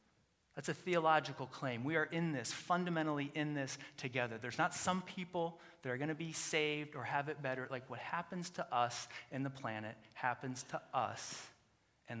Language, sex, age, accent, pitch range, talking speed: English, male, 30-49, American, 130-170 Hz, 185 wpm